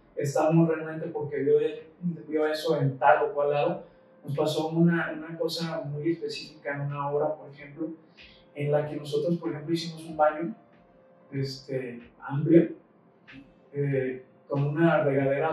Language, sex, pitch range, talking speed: Spanish, male, 140-165 Hz, 145 wpm